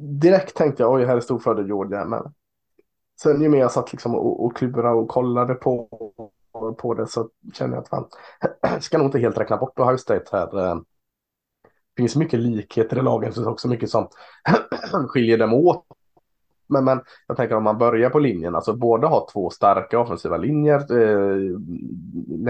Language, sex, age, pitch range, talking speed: Swedish, male, 20-39, 105-130 Hz, 185 wpm